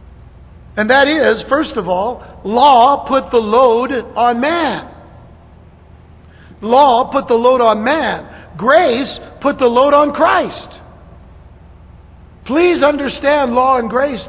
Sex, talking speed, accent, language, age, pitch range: male, 120 wpm, American, English, 60-79, 195-285 Hz